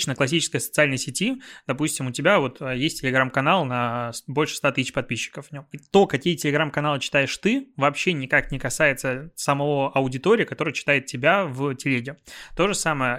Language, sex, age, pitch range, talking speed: Russian, male, 20-39, 130-155 Hz, 160 wpm